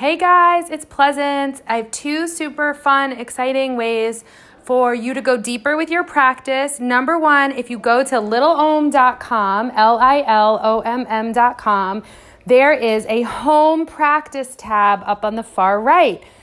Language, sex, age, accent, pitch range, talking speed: English, female, 30-49, American, 220-275 Hz, 160 wpm